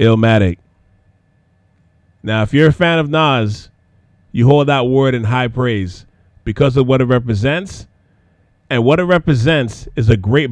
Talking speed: 155 wpm